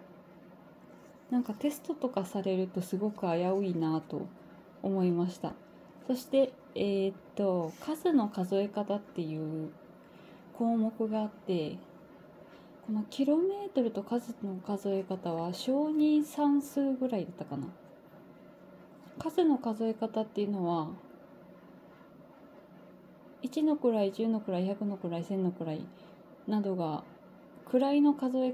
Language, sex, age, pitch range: Japanese, female, 20-39, 185-260 Hz